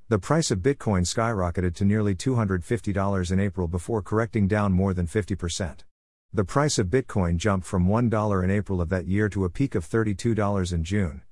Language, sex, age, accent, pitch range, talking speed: English, male, 50-69, American, 90-115 Hz, 185 wpm